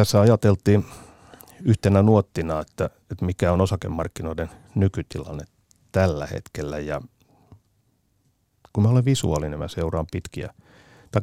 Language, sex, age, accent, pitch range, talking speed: Finnish, male, 50-69, native, 85-110 Hz, 110 wpm